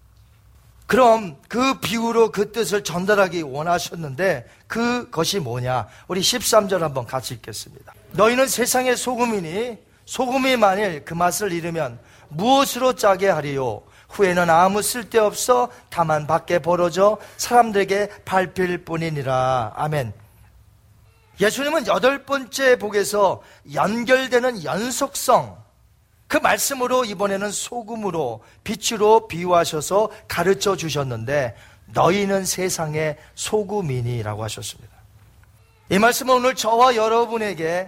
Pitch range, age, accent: 145-240 Hz, 40-59, native